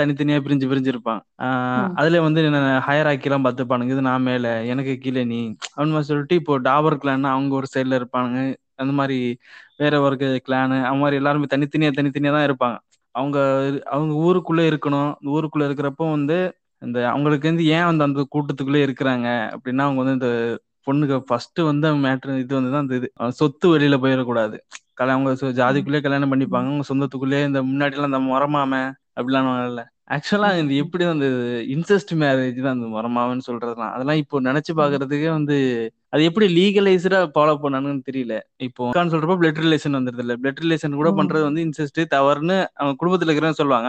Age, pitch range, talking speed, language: 20-39, 130-155 Hz, 130 wpm, Tamil